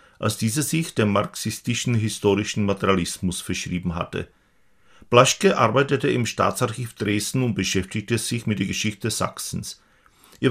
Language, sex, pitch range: Czech, male, 100-120 Hz